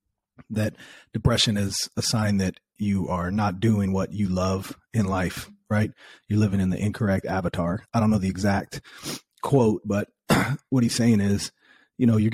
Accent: American